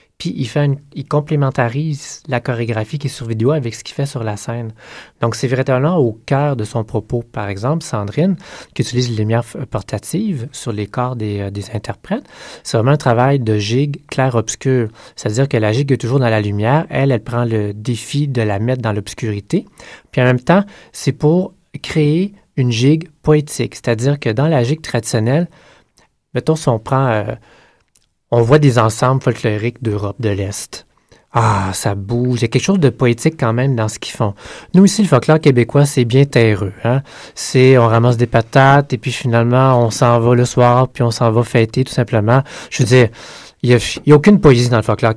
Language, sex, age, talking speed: French, male, 30-49, 205 wpm